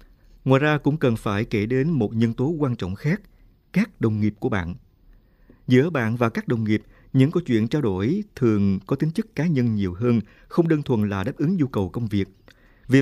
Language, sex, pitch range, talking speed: Vietnamese, male, 100-135 Hz, 220 wpm